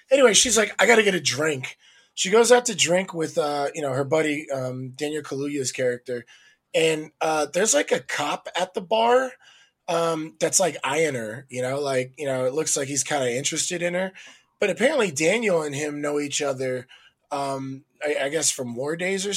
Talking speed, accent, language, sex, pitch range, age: 210 wpm, American, English, male, 135-185 Hz, 20-39